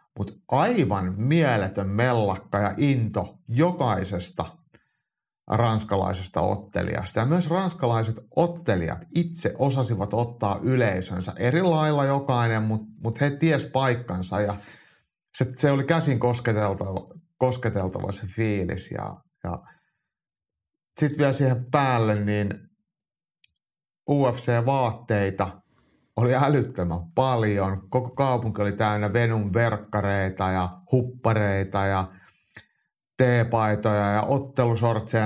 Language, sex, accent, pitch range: Finnish, male, native, 100-130 Hz